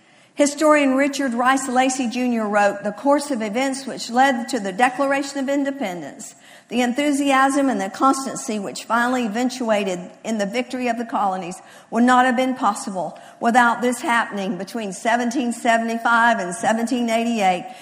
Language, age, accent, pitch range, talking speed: English, 50-69, American, 215-265 Hz, 145 wpm